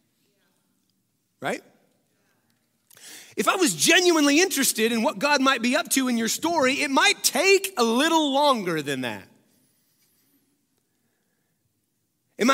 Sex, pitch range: male, 140-215 Hz